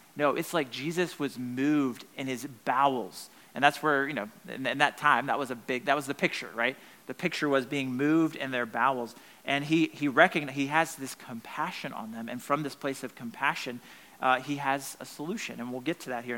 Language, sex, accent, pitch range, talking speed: English, male, American, 125-155 Hz, 225 wpm